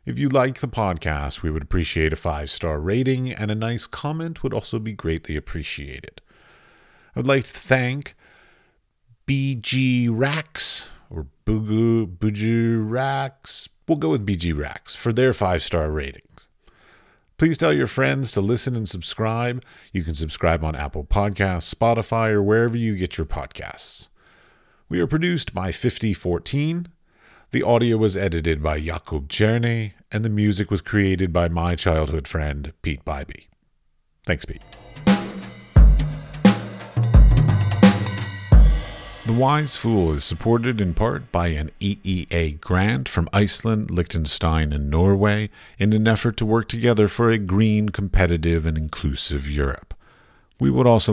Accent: American